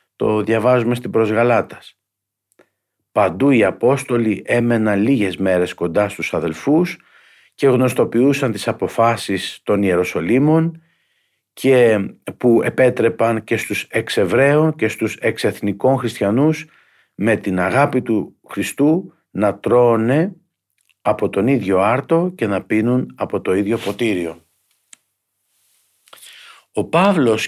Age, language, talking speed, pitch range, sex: 50-69, Greek, 110 wpm, 100-130 Hz, male